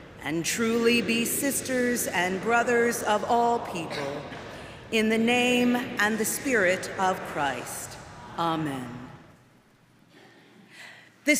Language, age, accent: English, 40-59, American